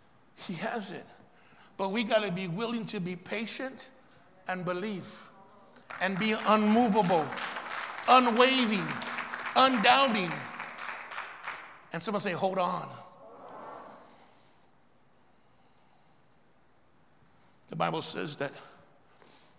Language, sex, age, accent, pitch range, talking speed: English, male, 60-79, American, 165-225 Hz, 85 wpm